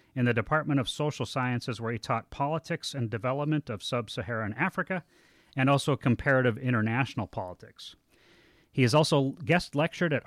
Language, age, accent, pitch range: English, 40-59, American, 115-140 Hz